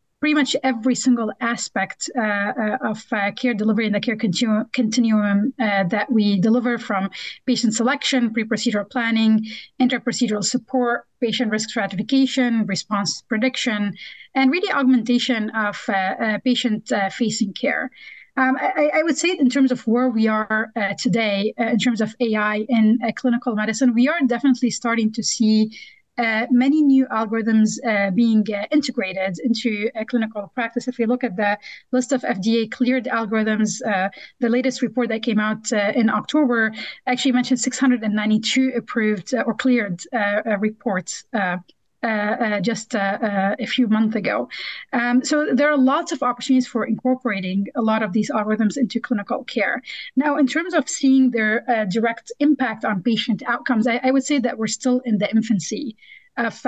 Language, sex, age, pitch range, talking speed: English, female, 30-49, 215-255 Hz, 170 wpm